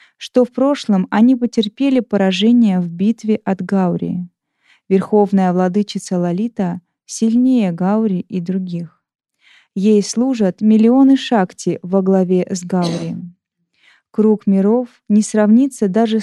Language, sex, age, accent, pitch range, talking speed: Russian, female, 20-39, native, 185-225 Hz, 110 wpm